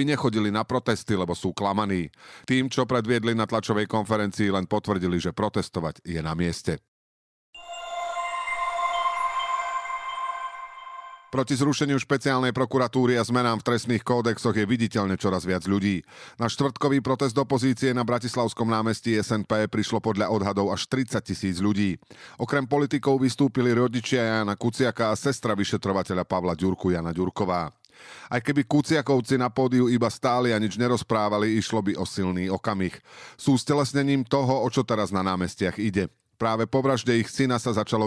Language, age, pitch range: Slovak, 40-59, 100-130 Hz